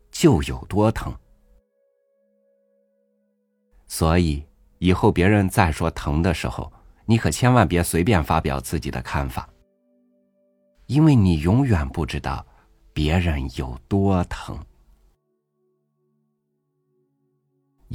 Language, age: Chinese, 50-69